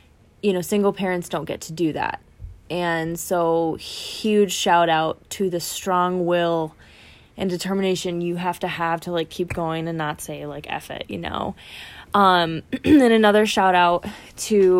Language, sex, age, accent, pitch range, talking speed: English, female, 20-39, American, 165-185 Hz, 170 wpm